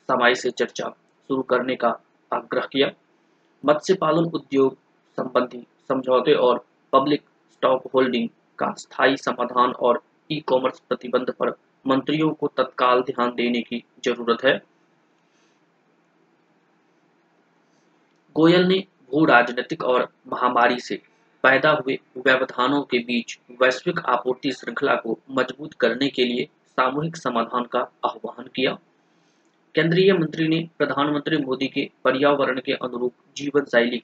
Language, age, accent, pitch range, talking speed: Hindi, 30-49, native, 125-150 Hz, 80 wpm